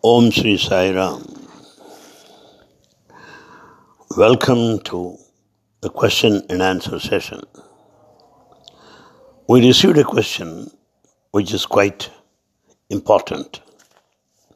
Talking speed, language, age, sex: 80 wpm, English, 60-79, male